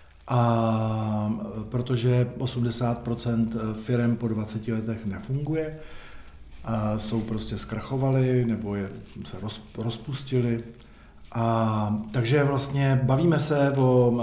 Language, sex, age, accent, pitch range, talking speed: Czech, male, 50-69, native, 115-140 Hz, 95 wpm